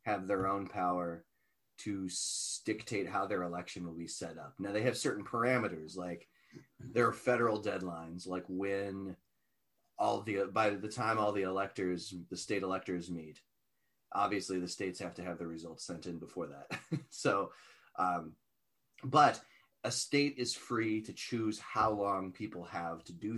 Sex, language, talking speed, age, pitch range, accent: male, English, 165 wpm, 30-49, 90-115 Hz, American